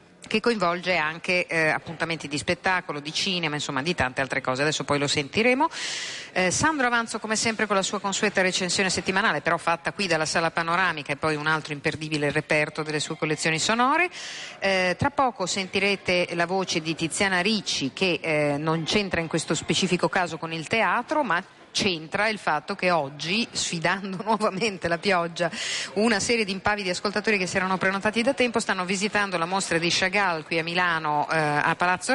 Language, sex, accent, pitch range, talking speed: Italian, female, native, 155-200 Hz, 180 wpm